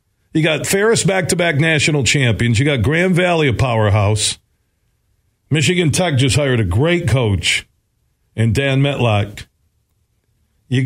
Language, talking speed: English, 125 wpm